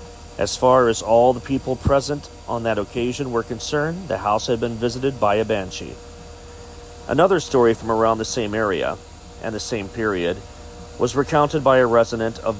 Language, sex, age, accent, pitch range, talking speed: English, male, 40-59, American, 85-125 Hz, 175 wpm